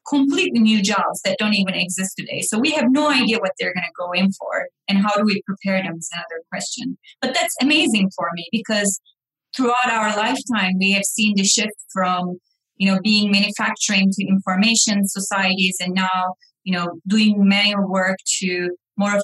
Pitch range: 185-225 Hz